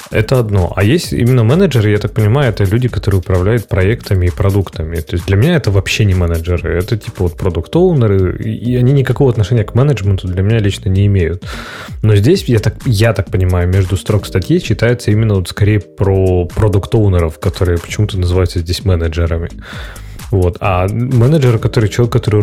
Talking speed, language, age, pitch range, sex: 175 wpm, Russian, 20-39, 95-110 Hz, male